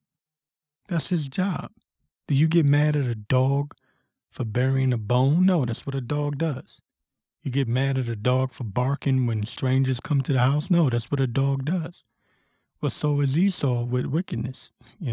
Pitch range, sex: 115-145 Hz, male